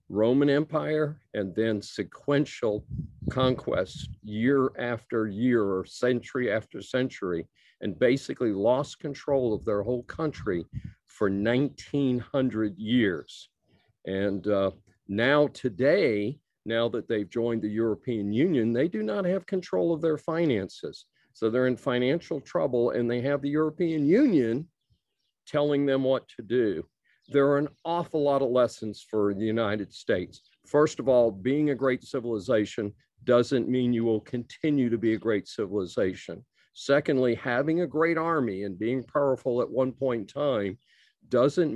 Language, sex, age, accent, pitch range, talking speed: English, male, 50-69, American, 110-140 Hz, 145 wpm